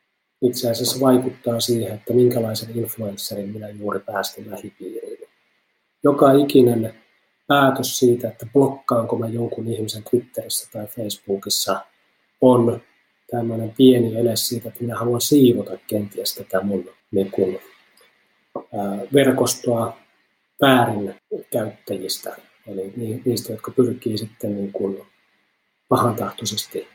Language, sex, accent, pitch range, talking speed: Finnish, male, native, 105-125 Hz, 95 wpm